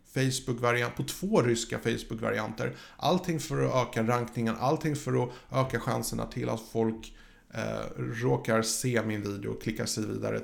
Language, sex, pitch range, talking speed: Swedish, male, 110-140 Hz, 155 wpm